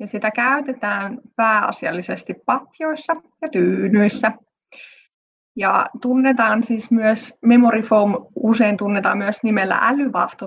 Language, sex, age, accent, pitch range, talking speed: Finnish, female, 20-39, native, 200-255 Hz, 105 wpm